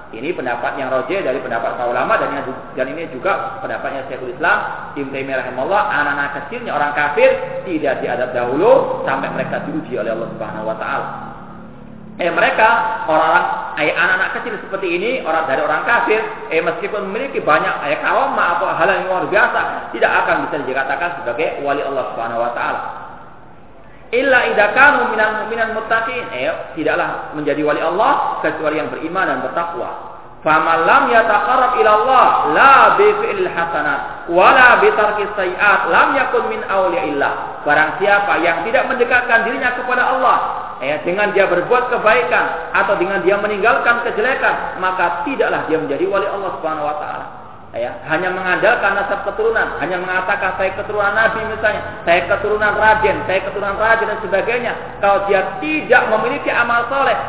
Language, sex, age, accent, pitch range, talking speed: Indonesian, male, 30-49, native, 180-245 Hz, 135 wpm